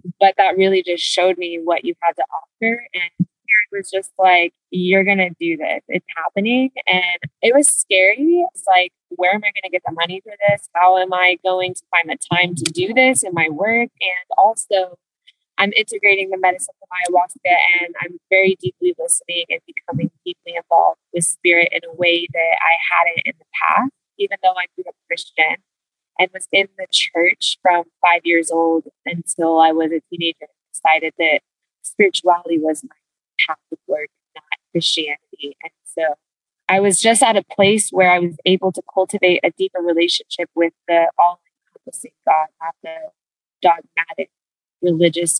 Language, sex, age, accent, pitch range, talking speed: English, female, 20-39, American, 170-200 Hz, 180 wpm